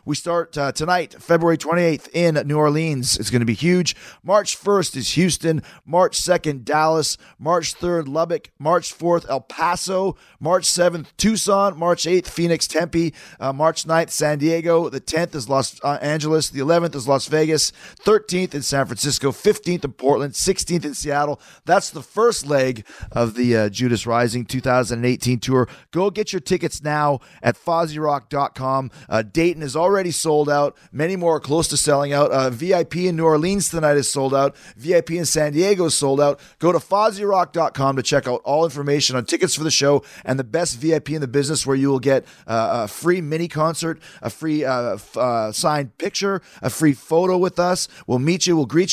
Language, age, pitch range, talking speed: English, 30-49, 140-170 Hz, 190 wpm